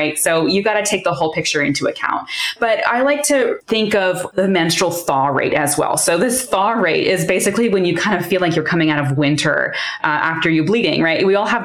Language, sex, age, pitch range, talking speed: English, female, 20-39, 155-185 Hz, 240 wpm